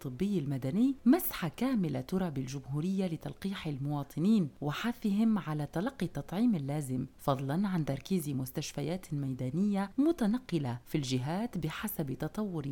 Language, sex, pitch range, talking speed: Arabic, female, 150-220 Hz, 110 wpm